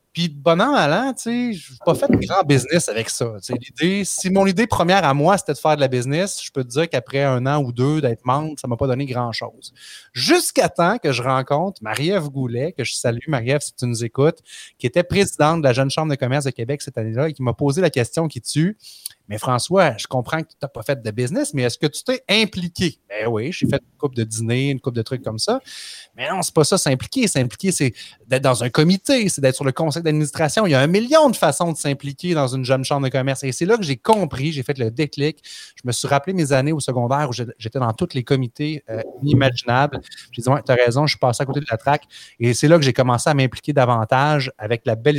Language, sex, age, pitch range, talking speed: French, male, 30-49, 125-160 Hz, 265 wpm